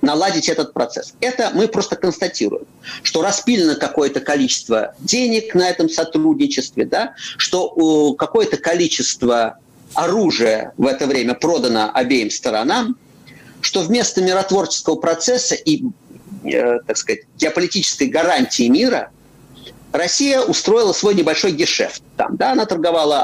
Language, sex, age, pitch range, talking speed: Russian, male, 50-69, 160-255 Hz, 115 wpm